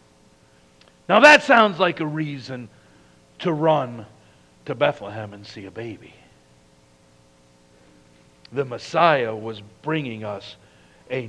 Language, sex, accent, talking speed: English, male, American, 105 wpm